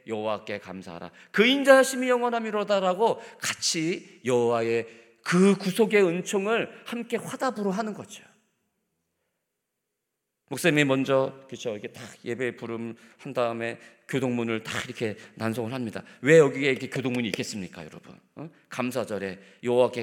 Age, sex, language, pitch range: 40-59, male, Korean, 115-175 Hz